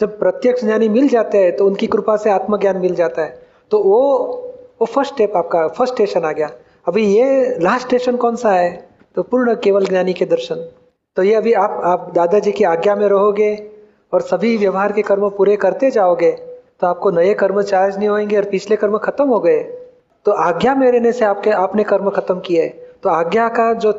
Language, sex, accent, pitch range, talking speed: Hindi, male, native, 190-225 Hz, 210 wpm